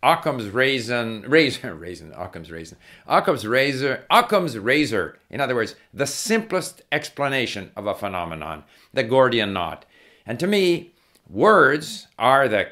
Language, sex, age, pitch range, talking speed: English, male, 50-69, 105-140 Hz, 125 wpm